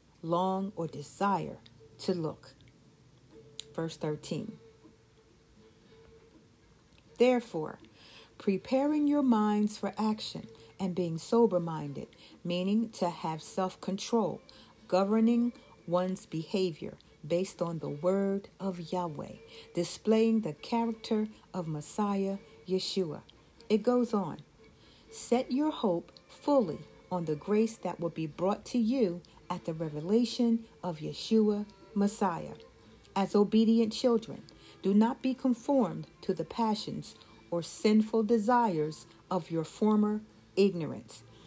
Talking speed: 105 wpm